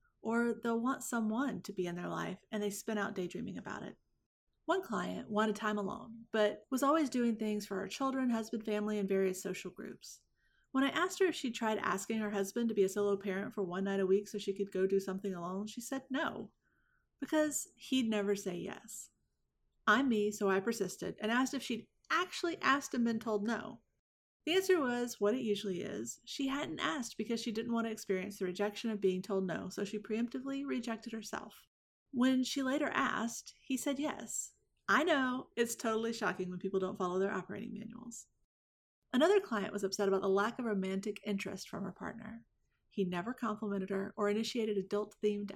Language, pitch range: English, 195-245 Hz